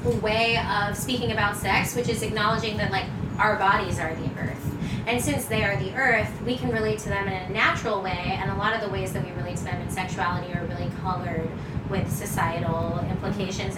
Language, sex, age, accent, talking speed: English, female, 20-39, American, 215 wpm